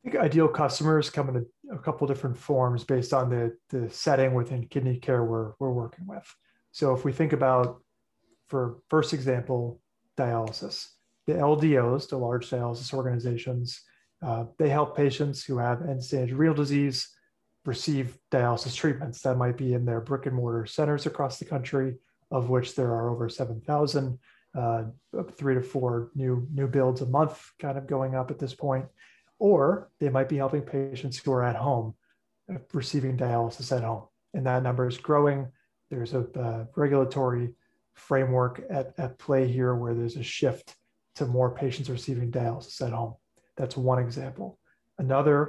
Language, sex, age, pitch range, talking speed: English, male, 30-49, 125-140 Hz, 170 wpm